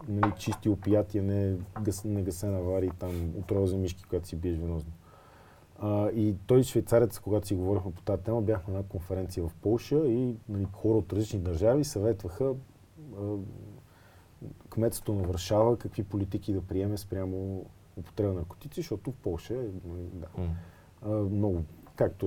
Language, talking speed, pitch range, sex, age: Bulgarian, 155 wpm, 85-110 Hz, male, 40-59